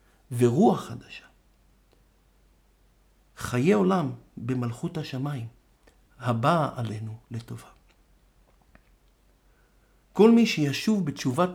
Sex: male